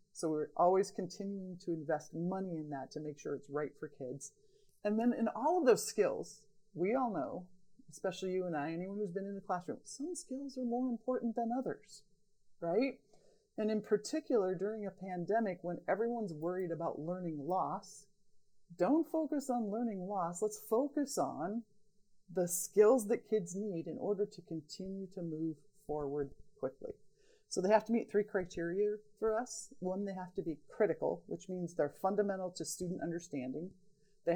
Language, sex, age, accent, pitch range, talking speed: English, female, 40-59, American, 170-210 Hz, 175 wpm